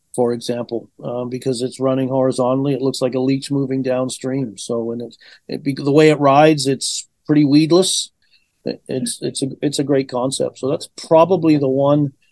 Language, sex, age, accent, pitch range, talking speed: English, male, 40-59, American, 135-165 Hz, 185 wpm